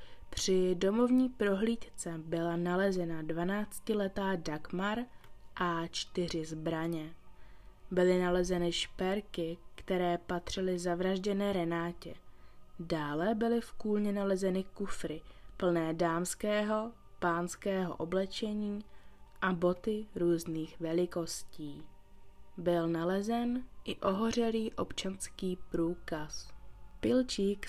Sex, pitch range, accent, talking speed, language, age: female, 170-205 Hz, native, 80 wpm, Czech, 20-39